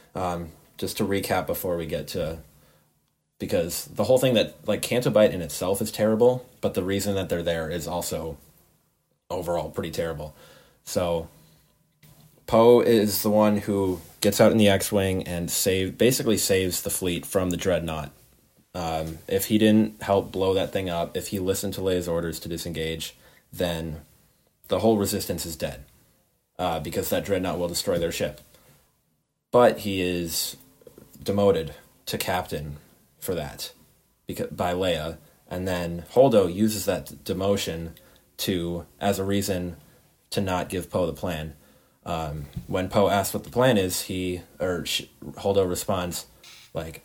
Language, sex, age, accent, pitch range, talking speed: English, male, 30-49, American, 85-105 Hz, 155 wpm